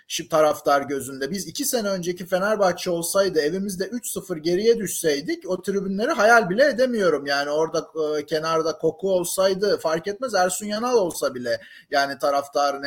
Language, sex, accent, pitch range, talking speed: Turkish, male, native, 180-275 Hz, 145 wpm